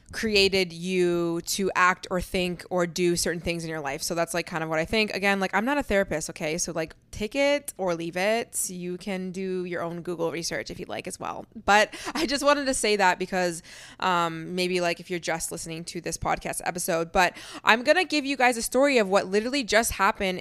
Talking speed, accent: 235 wpm, American